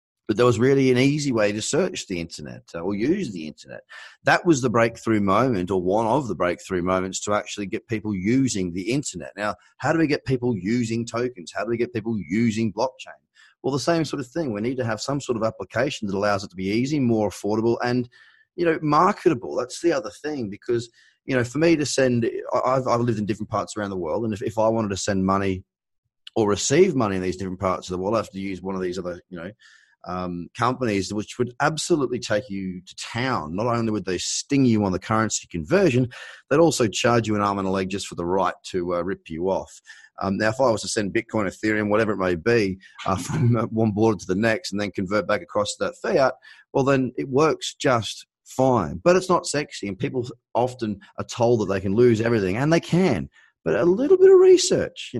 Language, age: English, 30-49